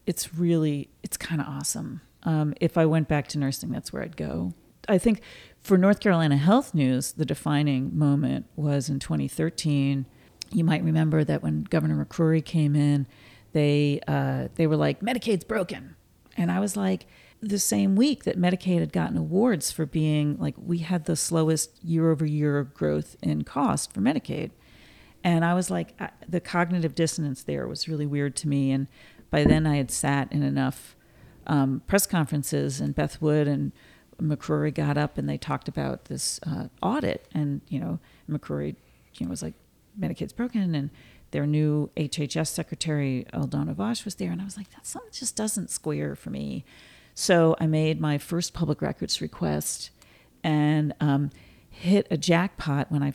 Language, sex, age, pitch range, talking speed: English, female, 40-59, 140-170 Hz, 175 wpm